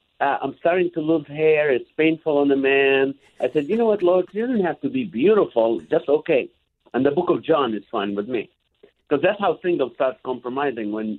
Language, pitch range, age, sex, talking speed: English, 125-160 Hz, 50-69, male, 220 wpm